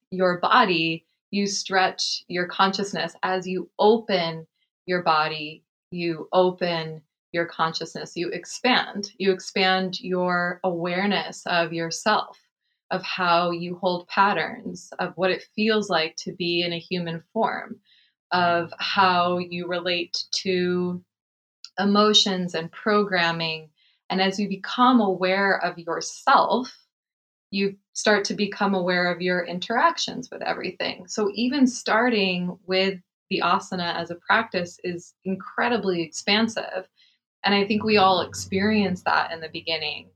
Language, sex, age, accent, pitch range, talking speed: English, female, 20-39, American, 175-205 Hz, 130 wpm